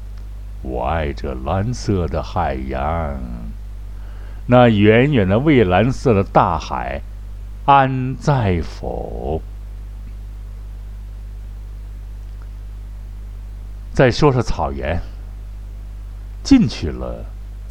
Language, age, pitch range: Chinese, 60-79, 100-105 Hz